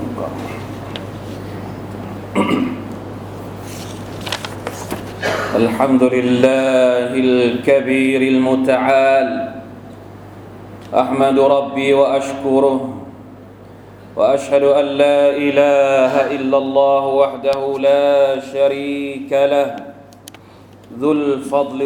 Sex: male